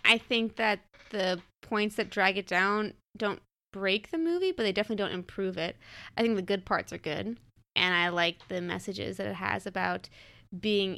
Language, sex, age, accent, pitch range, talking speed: English, female, 20-39, American, 180-215 Hz, 195 wpm